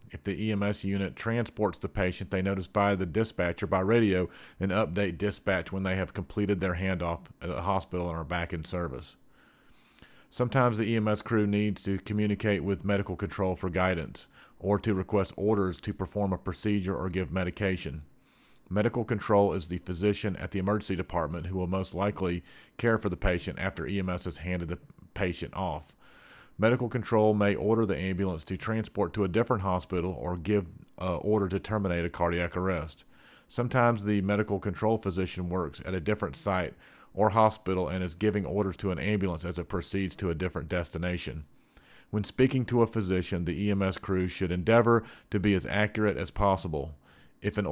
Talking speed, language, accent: 180 wpm, English, American